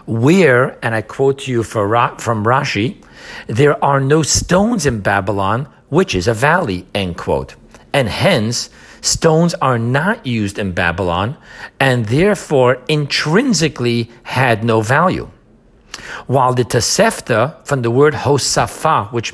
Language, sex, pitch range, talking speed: English, male, 115-155 Hz, 130 wpm